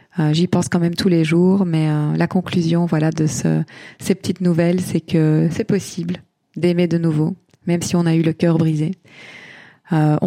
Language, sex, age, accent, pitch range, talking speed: French, female, 20-39, French, 160-180 Hz, 200 wpm